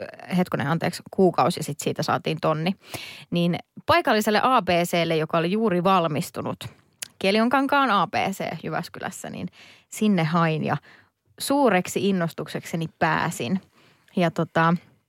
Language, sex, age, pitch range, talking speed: Finnish, female, 20-39, 175-220 Hz, 105 wpm